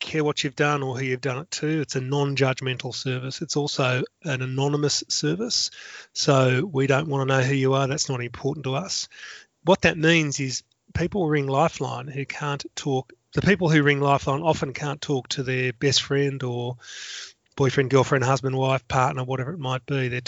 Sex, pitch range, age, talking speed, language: male, 130-145 Hz, 30-49, 195 wpm, English